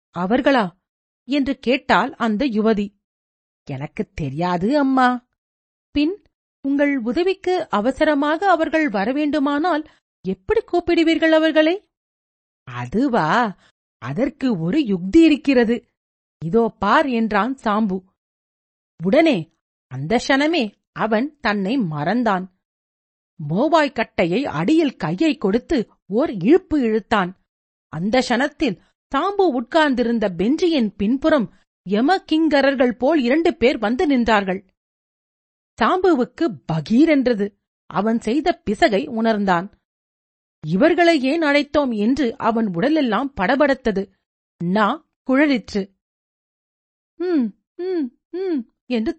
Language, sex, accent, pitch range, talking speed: Tamil, female, native, 200-300 Hz, 85 wpm